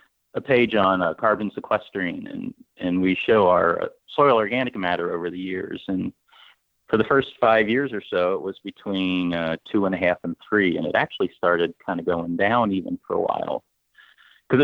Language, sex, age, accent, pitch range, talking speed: English, male, 30-49, American, 90-100 Hz, 195 wpm